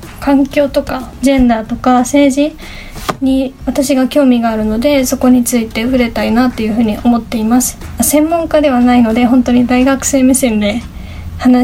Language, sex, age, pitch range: Japanese, female, 20-39, 235-275 Hz